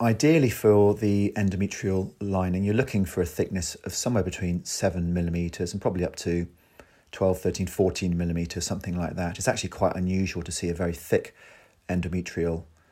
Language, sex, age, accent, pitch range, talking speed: English, male, 40-59, British, 85-100 Hz, 165 wpm